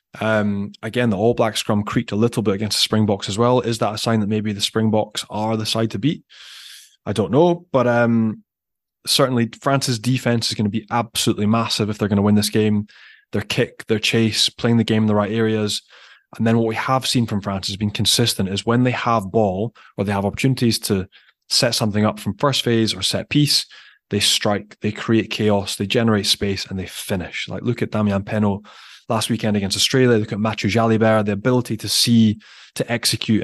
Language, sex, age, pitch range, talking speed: English, male, 20-39, 105-120 Hz, 220 wpm